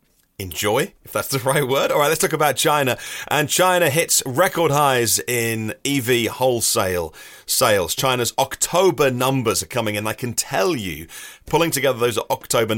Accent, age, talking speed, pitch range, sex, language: British, 30-49, 165 wpm, 110-145 Hz, male, English